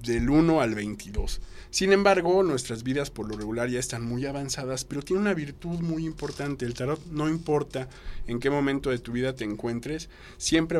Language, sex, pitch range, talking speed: Spanish, male, 115-140 Hz, 190 wpm